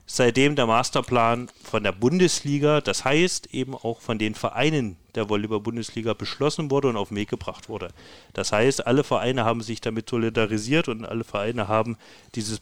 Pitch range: 110-135 Hz